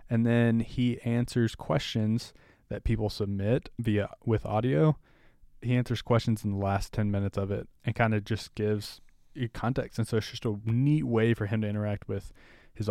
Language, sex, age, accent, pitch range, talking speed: English, male, 20-39, American, 105-125 Hz, 185 wpm